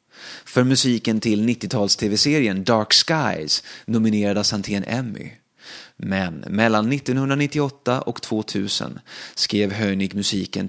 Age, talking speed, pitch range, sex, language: 30-49, 105 wpm, 105-130 Hz, male, Swedish